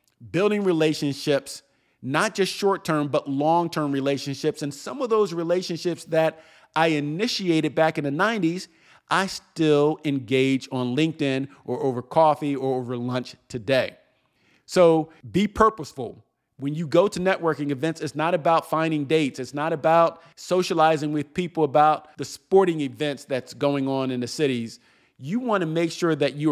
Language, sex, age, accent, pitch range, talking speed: English, male, 40-59, American, 130-165 Hz, 155 wpm